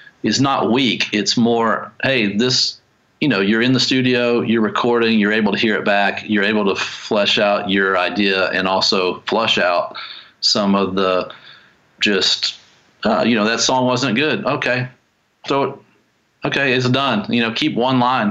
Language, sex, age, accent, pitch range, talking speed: English, male, 40-59, American, 100-120 Hz, 175 wpm